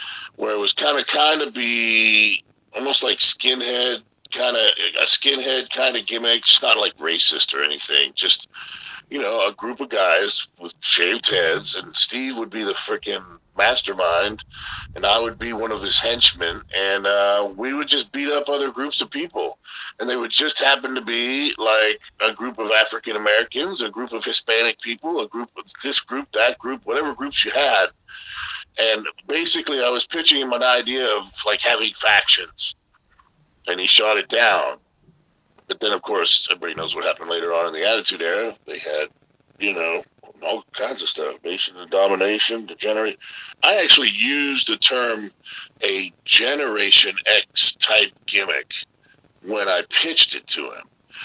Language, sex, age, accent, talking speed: English, male, 50-69, American, 170 wpm